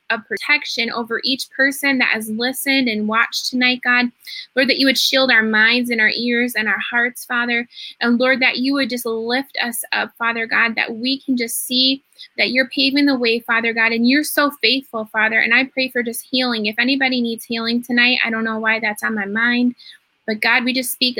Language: English